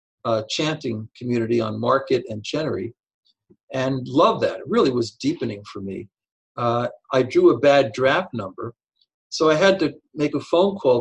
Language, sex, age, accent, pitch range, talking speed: English, male, 50-69, American, 115-140 Hz, 170 wpm